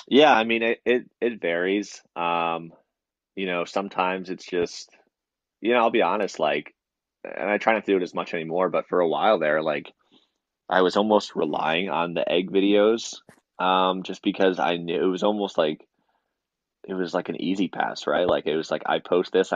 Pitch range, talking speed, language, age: 85-95 Hz, 205 wpm, English, 20-39